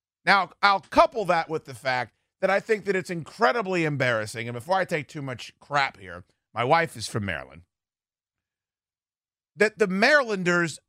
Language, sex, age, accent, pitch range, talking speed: English, male, 40-59, American, 125-200 Hz, 165 wpm